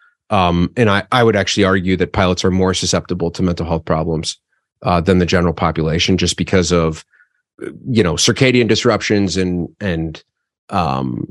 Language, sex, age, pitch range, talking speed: English, male, 30-49, 90-120 Hz, 165 wpm